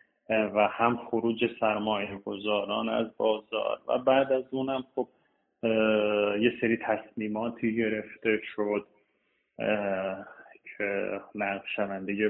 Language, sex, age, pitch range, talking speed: Persian, male, 30-49, 110-145 Hz, 100 wpm